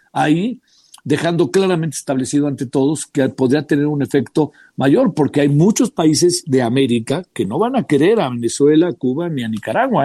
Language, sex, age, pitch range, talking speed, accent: Spanish, male, 50-69, 140-195 Hz, 180 wpm, Mexican